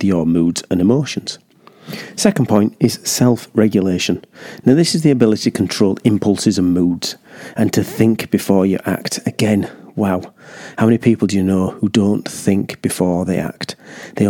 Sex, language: male, English